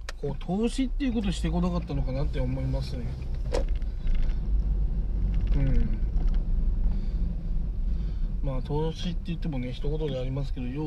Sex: male